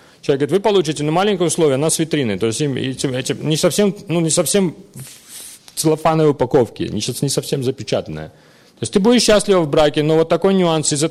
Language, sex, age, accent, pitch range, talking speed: Russian, male, 40-59, native, 130-175 Hz, 210 wpm